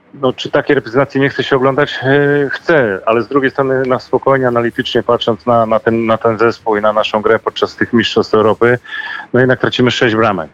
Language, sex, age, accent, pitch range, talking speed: Polish, male, 30-49, native, 115-135 Hz, 205 wpm